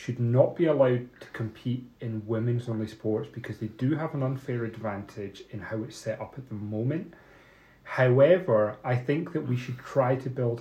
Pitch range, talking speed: 110-140 Hz, 190 wpm